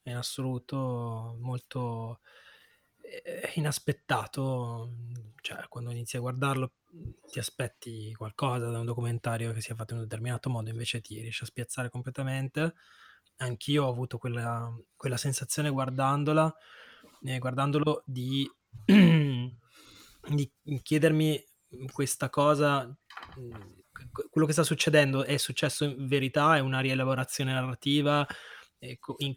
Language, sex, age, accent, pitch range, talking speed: Italian, male, 20-39, native, 120-145 Hz, 115 wpm